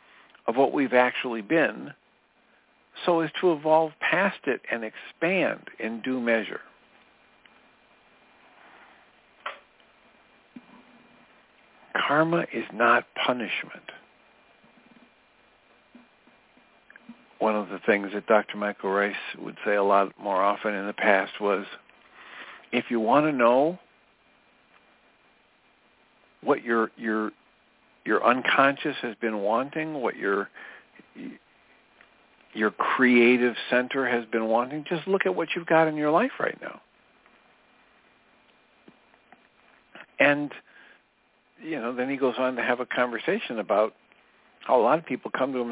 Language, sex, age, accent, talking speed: English, male, 60-79, American, 120 wpm